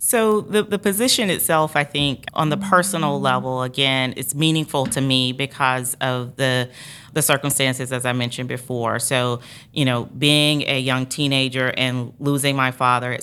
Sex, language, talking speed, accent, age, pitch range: female, English, 170 wpm, American, 30-49, 125-140 Hz